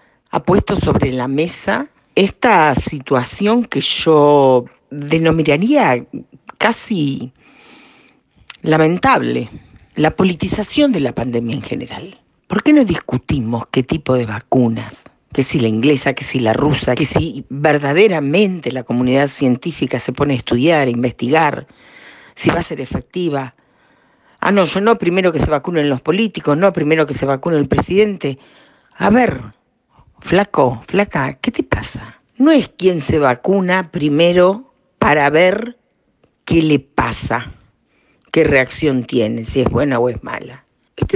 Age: 50-69